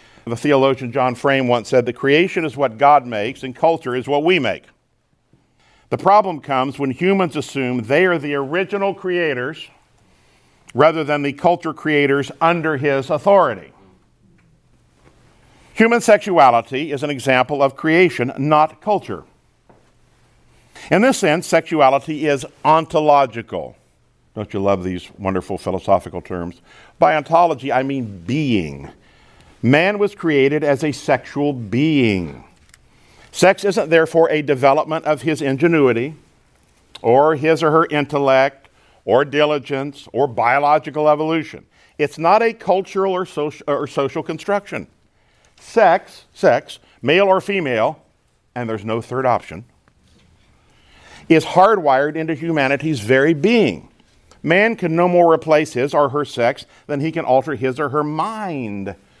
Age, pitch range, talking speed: 50-69, 125-165 Hz, 130 wpm